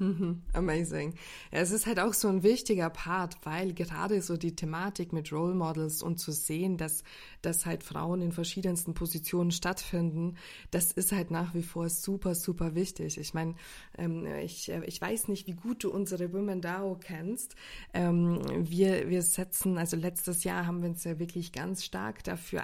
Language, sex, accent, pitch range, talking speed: German, female, German, 175-195 Hz, 170 wpm